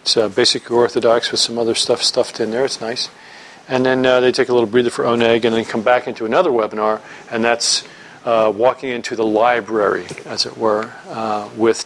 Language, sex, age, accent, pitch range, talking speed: English, male, 40-59, American, 110-125 Hz, 205 wpm